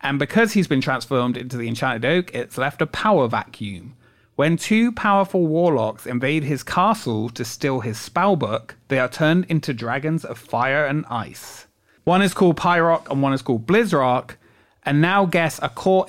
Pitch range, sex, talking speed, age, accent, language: 120-165 Hz, male, 180 wpm, 30-49, British, English